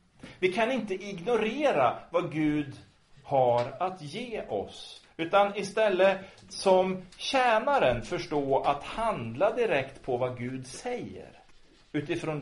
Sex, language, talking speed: male, Swedish, 110 wpm